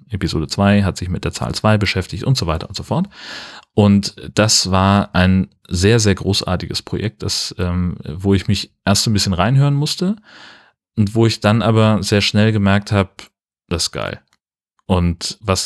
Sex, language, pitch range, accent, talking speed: male, German, 90-105 Hz, German, 185 wpm